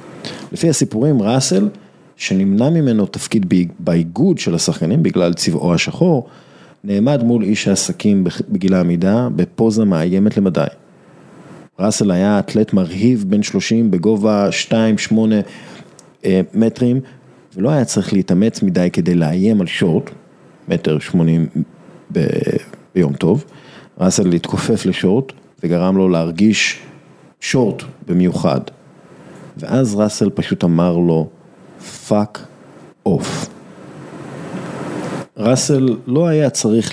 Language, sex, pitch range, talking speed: Hebrew, male, 95-130 Hz, 105 wpm